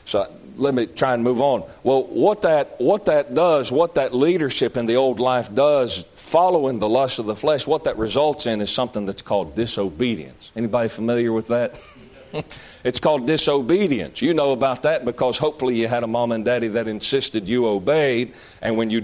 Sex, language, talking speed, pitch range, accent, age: male, English, 195 wpm, 115-150 Hz, American, 40-59